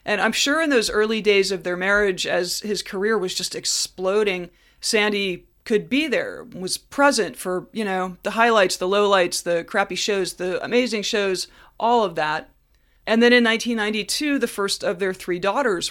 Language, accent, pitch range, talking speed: English, American, 180-225 Hz, 180 wpm